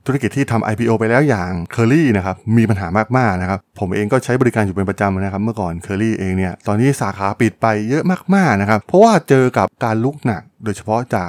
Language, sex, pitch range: Thai, male, 100-130 Hz